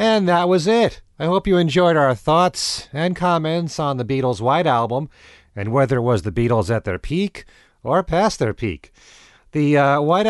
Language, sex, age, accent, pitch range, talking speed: English, male, 40-59, American, 120-175 Hz, 190 wpm